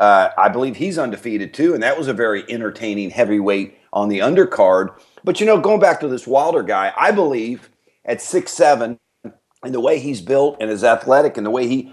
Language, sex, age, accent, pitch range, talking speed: English, male, 40-59, American, 105-130 Hz, 205 wpm